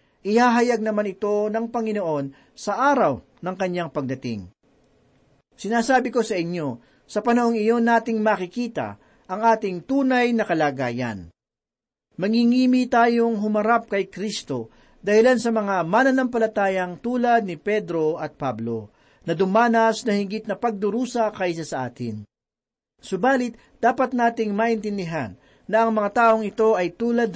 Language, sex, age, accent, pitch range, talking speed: Filipino, male, 40-59, native, 170-235 Hz, 125 wpm